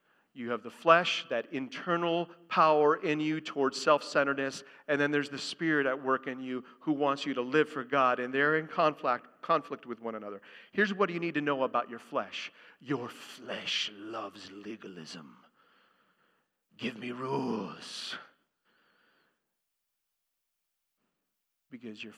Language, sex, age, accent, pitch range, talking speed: English, male, 40-59, American, 125-180 Hz, 145 wpm